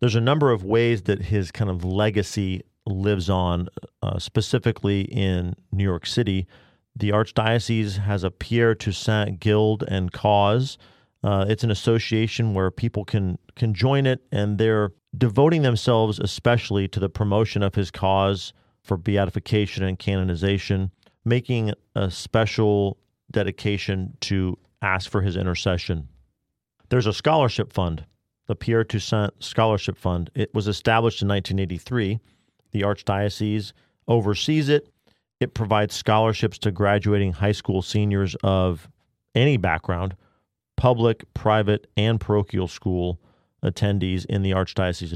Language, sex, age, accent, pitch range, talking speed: English, male, 40-59, American, 95-115 Hz, 130 wpm